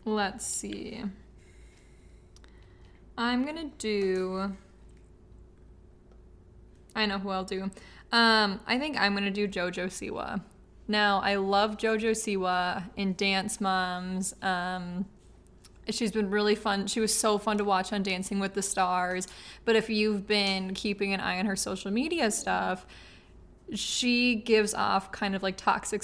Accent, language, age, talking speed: American, English, 20-39, 140 wpm